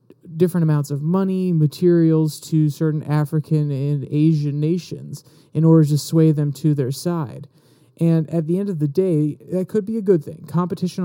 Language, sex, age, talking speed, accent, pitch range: English, male, 30-49, 180 wpm, American, 145-165 Hz